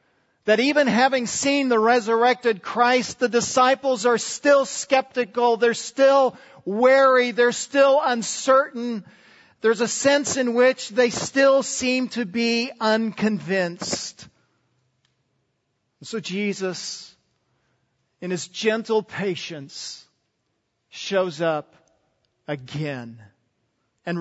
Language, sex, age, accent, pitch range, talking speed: English, male, 50-69, American, 150-220 Hz, 95 wpm